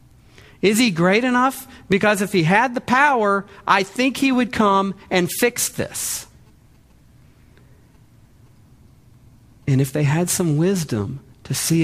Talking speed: 130 wpm